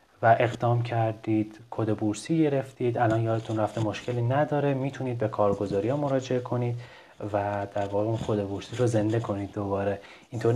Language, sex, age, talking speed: Persian, male, 30-49, 155 wpm